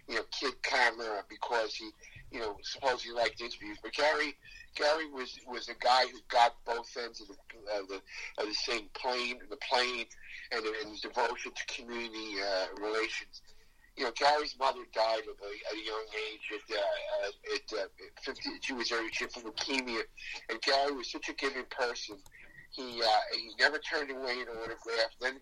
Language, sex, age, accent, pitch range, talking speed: English, male, 50-69, American, 110-135 Hz, 185 wpm